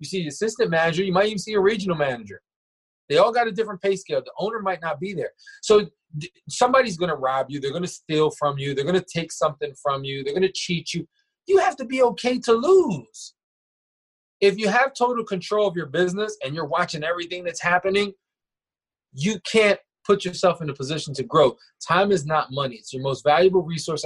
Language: English